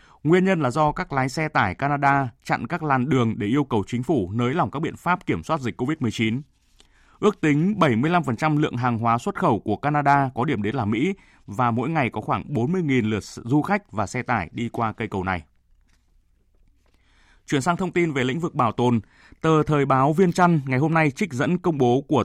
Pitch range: 115-155 Hz